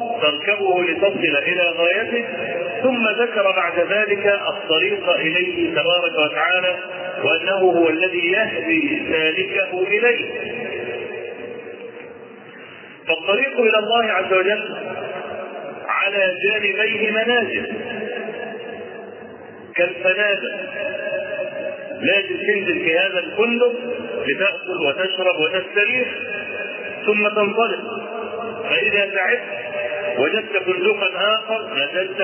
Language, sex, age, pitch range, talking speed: Arabic, male, 40-59, 185-245 Hz, 80 wpm